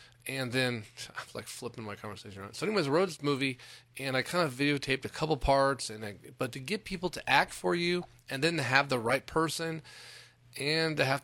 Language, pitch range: English, 120-150 Hz